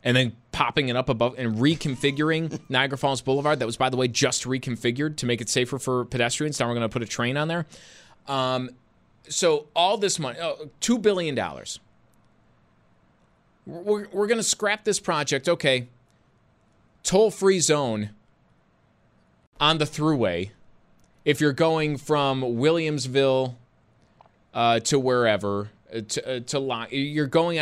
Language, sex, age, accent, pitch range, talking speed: English, male, 20-39, American, 120-150 Hz, 150 wpm